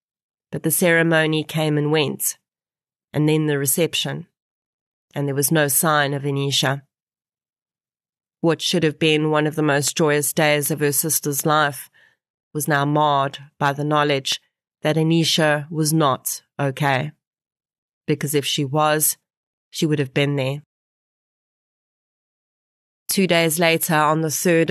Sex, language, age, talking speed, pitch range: female, English, 30-49, 140 wpm, 145-160 Hz